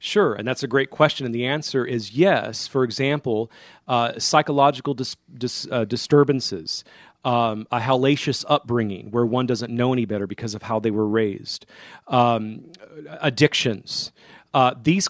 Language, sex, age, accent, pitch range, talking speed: English, male, 40-59, American, 115-145 Hz, 145 wpm